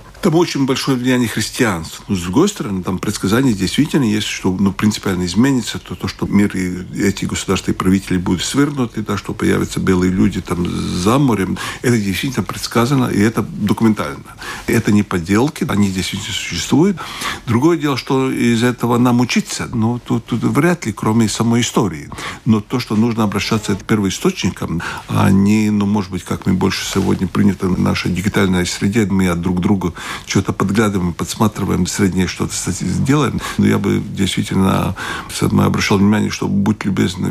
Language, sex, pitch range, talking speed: Russian, male, 95-115 Hz, 165 wpm